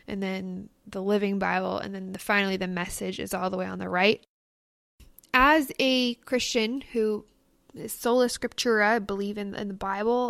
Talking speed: 175 wpm